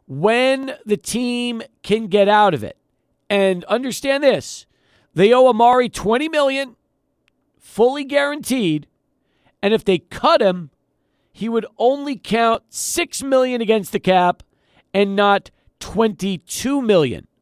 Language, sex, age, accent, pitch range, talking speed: English, male, 40-59, American, 180-240 Hz, 125 wpm